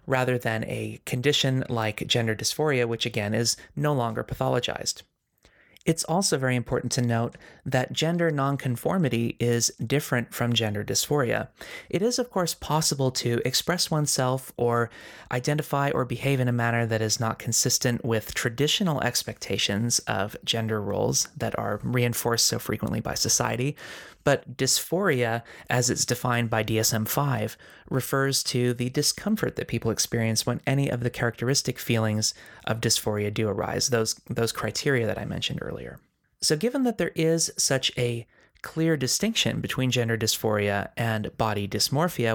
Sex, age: male, 30-49